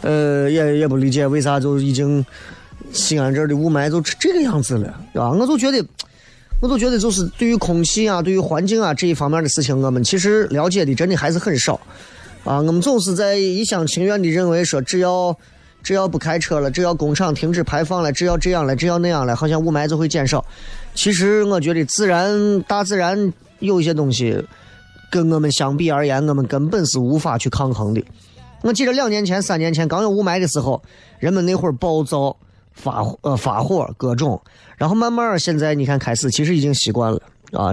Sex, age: male, 20-39